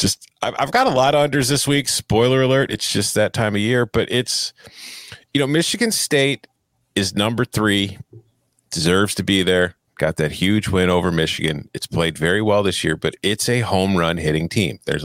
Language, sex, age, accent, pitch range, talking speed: English, male, 40-59, American, 90-125 Hz, 200 wpm